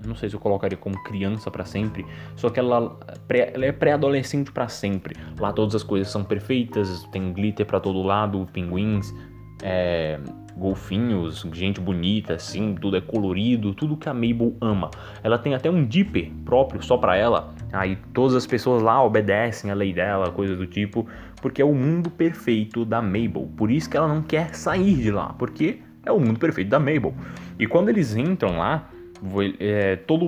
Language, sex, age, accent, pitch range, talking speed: Portuguese, male, 20-39, Brazilian, 100-135 Hz, 180 wpm